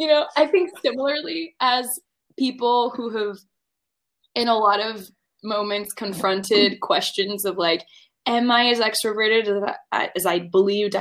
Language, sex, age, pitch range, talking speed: English, female, 20-39, 195-235 Hz, 140 wpm